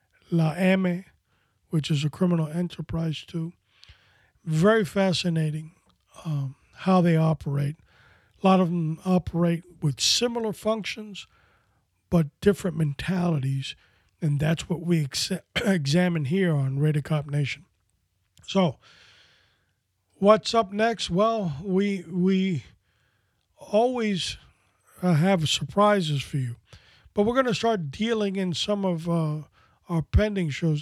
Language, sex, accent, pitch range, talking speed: English, male, American, 145-185 Hz, 120 wpm